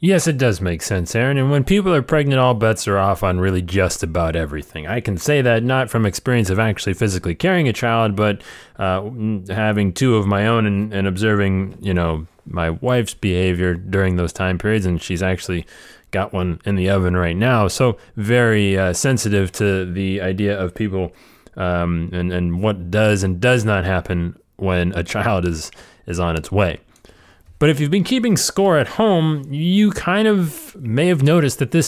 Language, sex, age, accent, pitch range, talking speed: English, male, 30-49, American, 95-130 Hz, 195 wpm